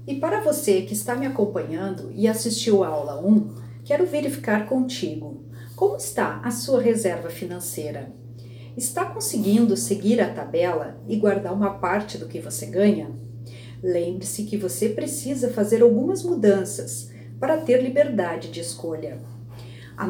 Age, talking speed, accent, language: 40-59, 140 wpm, Brazilian, Portuguese